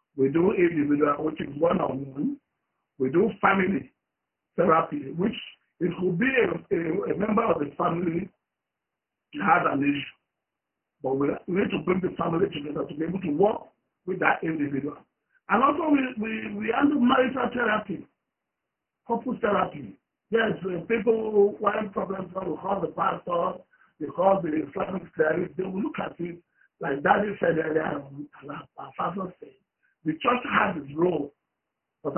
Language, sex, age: English, male, 50-69